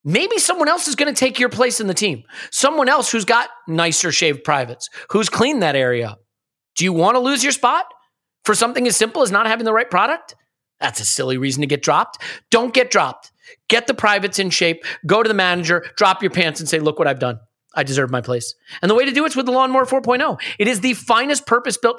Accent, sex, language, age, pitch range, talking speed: American, male, English, 30-49, 165-245 Hz, 240 wpm